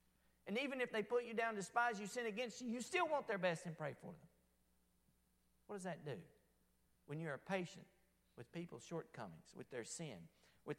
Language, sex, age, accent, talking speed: English, male, 50-69, American, 195 wpm